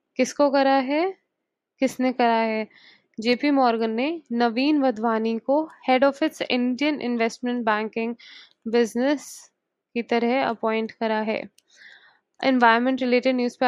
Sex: female